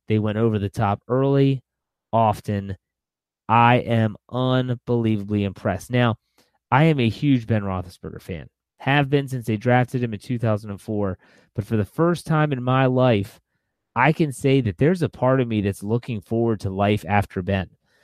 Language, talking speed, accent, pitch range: English, 170 wpm, American, 100-130 Hz